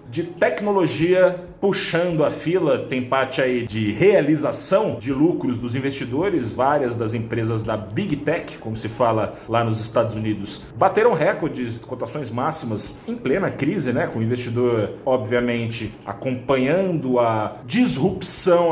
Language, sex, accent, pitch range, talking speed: Portuguese, male, Brazilian, 115-155 Hz, 140 wpm